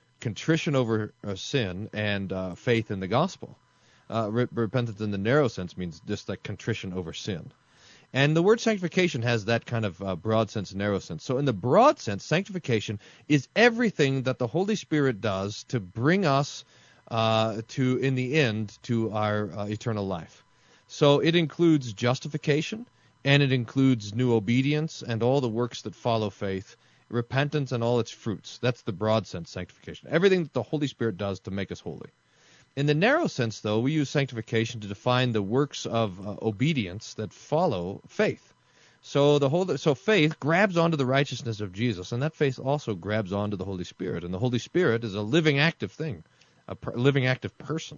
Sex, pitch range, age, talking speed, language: male, 110-145 Hz, 40-59, 180 wpm, English